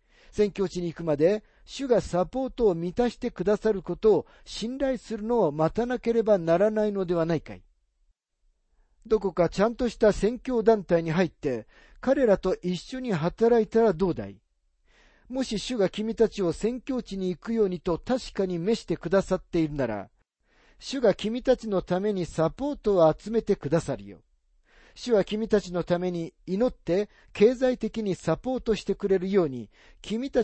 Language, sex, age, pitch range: Japanese, male, 50-69, 165-220 Hz